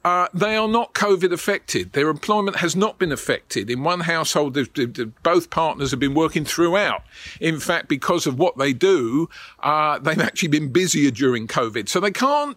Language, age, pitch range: English, 50-69, 150-200 Hz